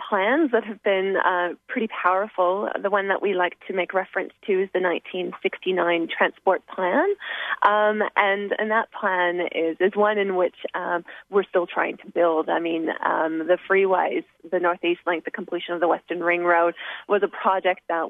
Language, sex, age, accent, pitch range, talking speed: English, female, 30-49, American, 175-225 Hz, 185 wpm